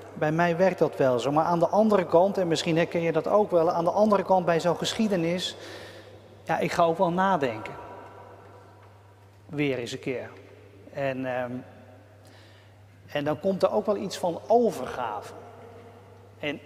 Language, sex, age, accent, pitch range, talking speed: Dutch, male, 40-59, Dutch, 120-185 Hz, 170 wpm